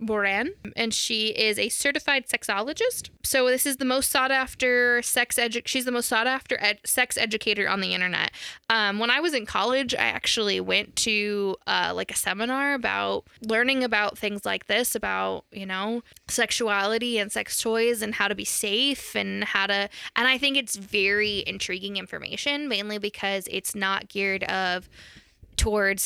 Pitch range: 200-250 Hz